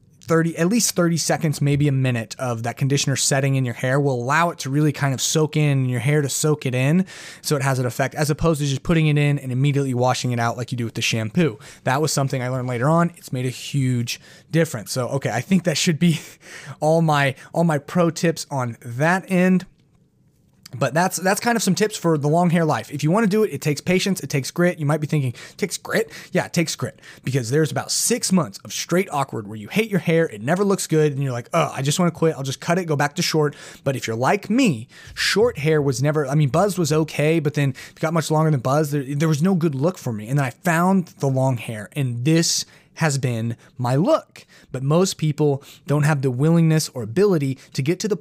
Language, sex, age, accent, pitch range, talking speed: English, male, 20-39, American, 135-165 Hz, 260 wpm